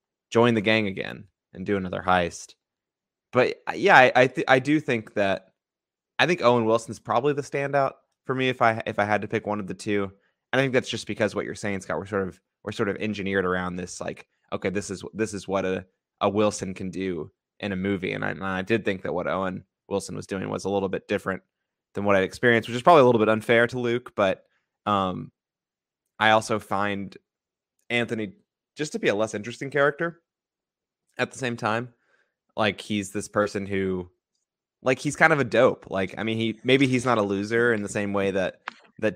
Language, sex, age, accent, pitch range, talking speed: English, male, 20-39, American, 95-120 Hz, 220 wpm